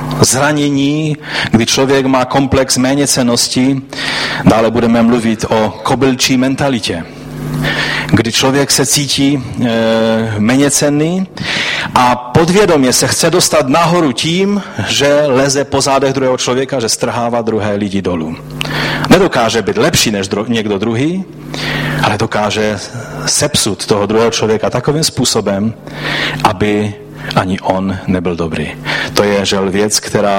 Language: Czech